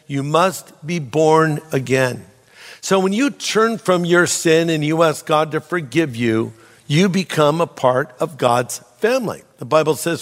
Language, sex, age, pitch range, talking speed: English, male, 50-69, 150-190 Hz, 170 wpm